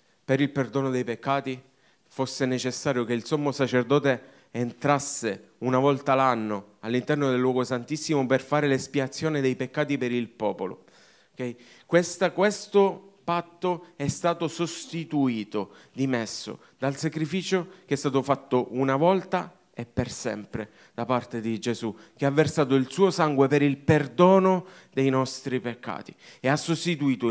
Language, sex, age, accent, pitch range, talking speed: Italian, male, 30-49, native, 115-150 Hz, 140 wpm